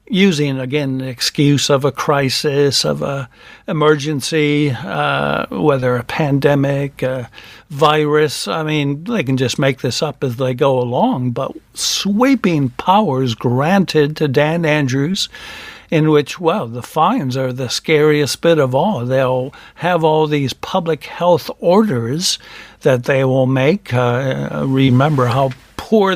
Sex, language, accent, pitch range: male, English, American, 130-165 Hz